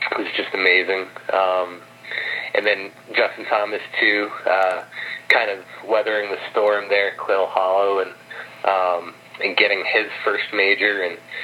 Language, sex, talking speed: English, male, 145 wpm